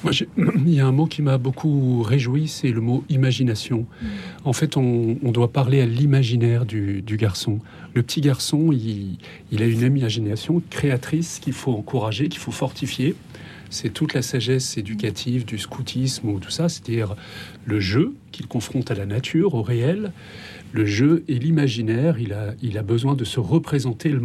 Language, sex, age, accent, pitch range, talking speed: French, male, 40-59, French, 115-145 Hz, 185 wpm